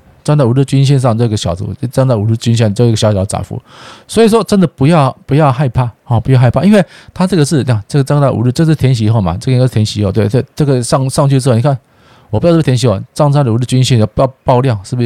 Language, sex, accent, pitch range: Chinese, male, native, 110-145 Hz